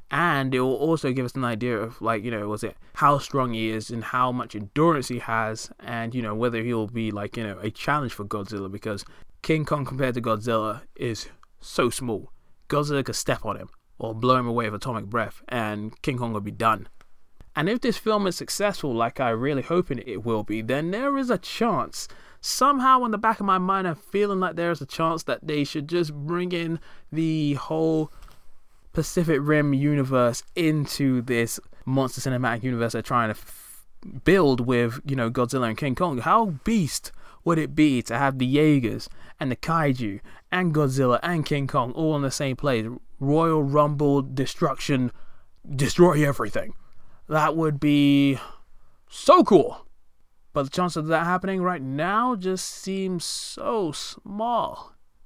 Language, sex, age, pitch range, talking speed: English, male, 20-39, 120-160 Hz, 185 wpm